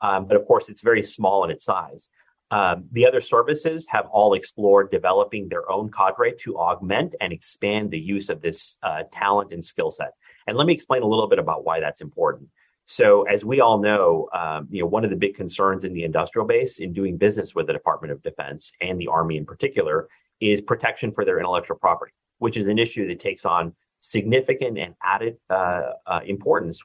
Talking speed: 210 wpm